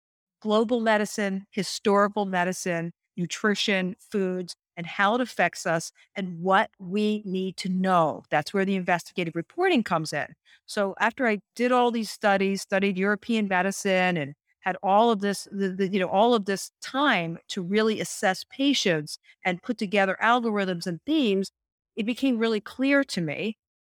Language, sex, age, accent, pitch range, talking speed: English, female, 50-69, American, 175-215 Hz, 155 wpm